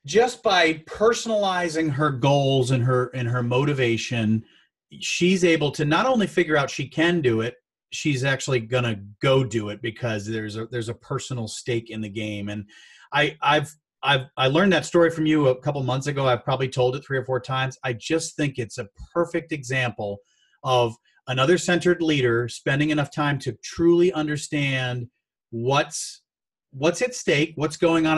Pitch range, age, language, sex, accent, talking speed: 125-165 Hz, 30-49, English, male, American, 175 wpm